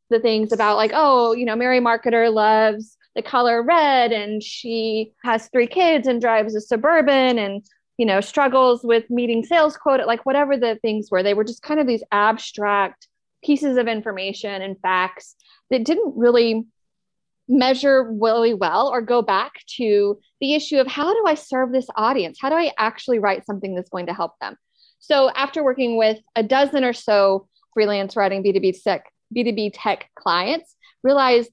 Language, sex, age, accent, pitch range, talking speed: English, female, 30-49, American, 210-270 Hz, 180 wpm